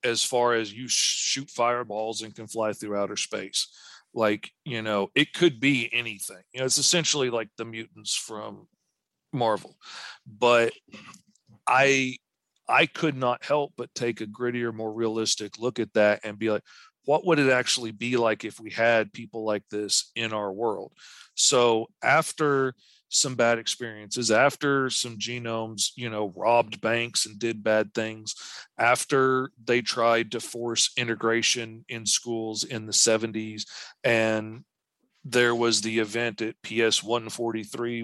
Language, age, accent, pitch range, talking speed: English, 40-59, American, 110-120 Hz, 150 wpm